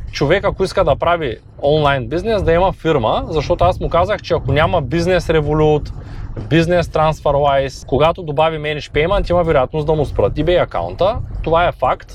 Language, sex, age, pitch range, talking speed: Bulgarian, male, 20-39, 125-190 Hz, 175 wpm